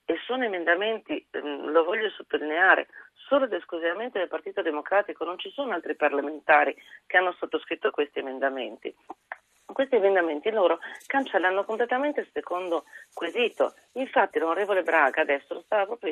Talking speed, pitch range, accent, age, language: 140 wpm, 165-265 Hz, native, 40-59, Italian